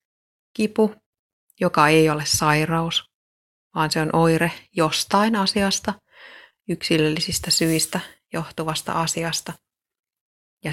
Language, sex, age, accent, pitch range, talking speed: Finnish, female, 30-49, native, 155-175 Hz, 90 wpm